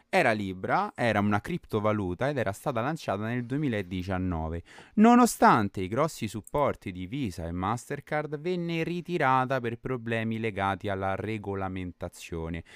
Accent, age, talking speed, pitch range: native, 30-49, 120 wpm, 95-140 Hz